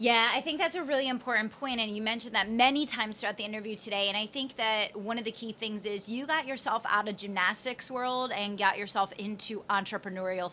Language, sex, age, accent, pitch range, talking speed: English, female, 30-49, American, 190-230 Hz, 230 wpm